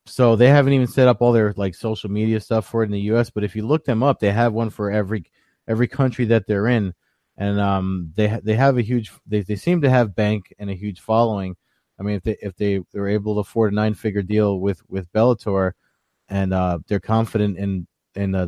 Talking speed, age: 245 wpm, 20-39